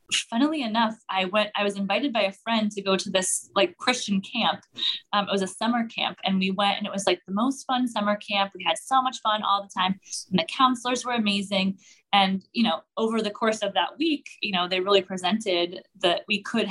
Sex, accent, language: female, American, English